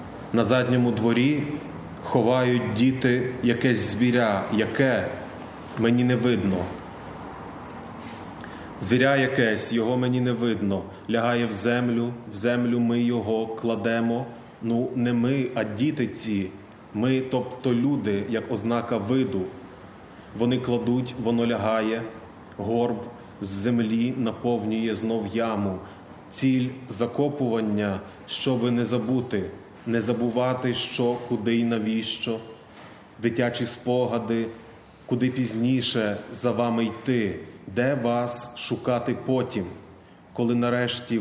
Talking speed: 105 wpm